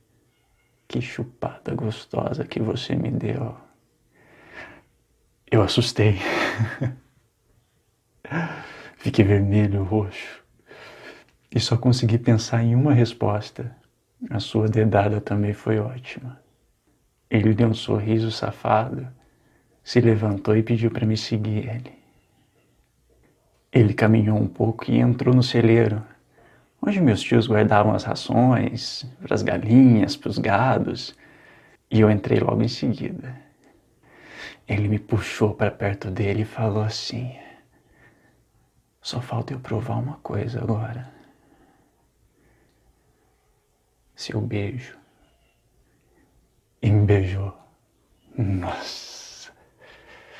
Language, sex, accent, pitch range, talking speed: Portuguese, male, Brazilian, 105-120 Hz, 100 wpm